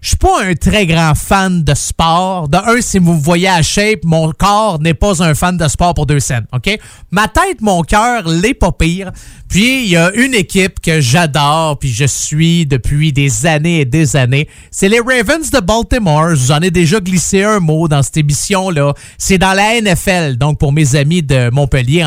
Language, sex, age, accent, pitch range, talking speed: French, male, 30-49, Canadian, 155-215 Hz, 210 wpm